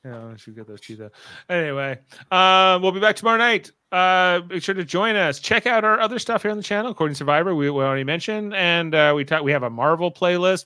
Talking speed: 250 wpm